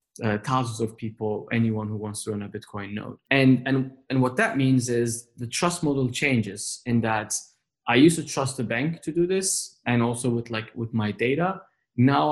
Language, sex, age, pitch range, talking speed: English, male, 20-39, 110-130 Hz, 205 wpm